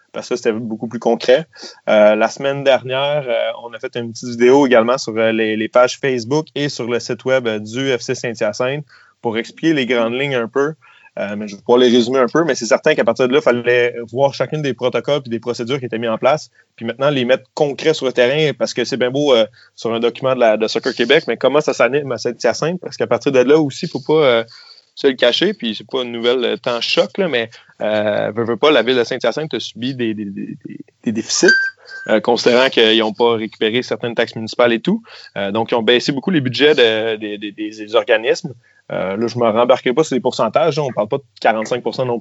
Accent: Canadian